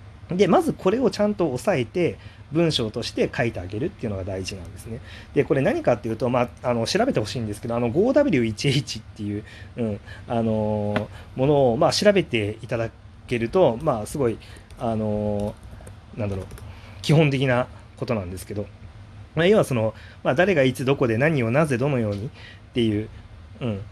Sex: male